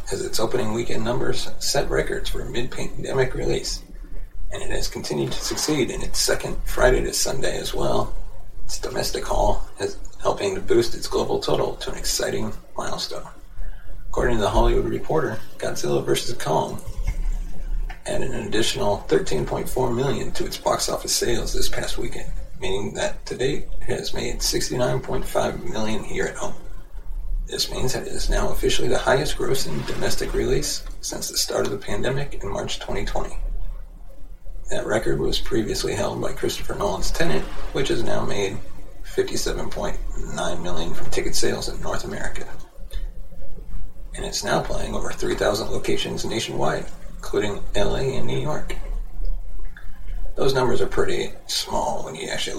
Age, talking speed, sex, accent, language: 30-49, 155 wpm, male, American, English